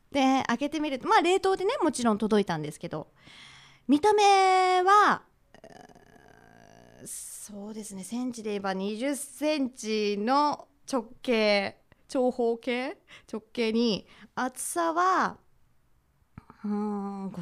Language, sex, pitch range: Japanese, female, 210-335 Hz